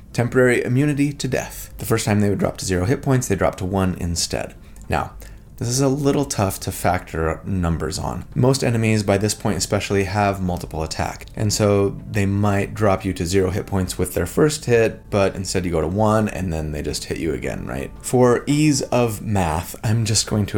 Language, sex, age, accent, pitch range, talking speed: English, male, 30-49, American, 90-120 Hz, 215 wpm